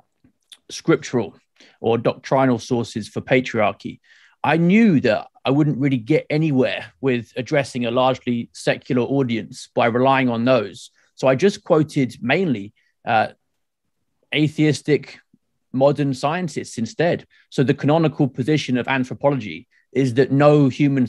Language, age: English, 30-49